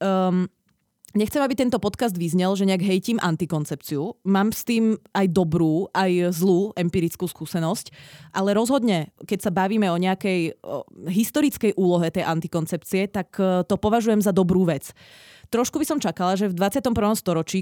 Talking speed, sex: 150 wpm, female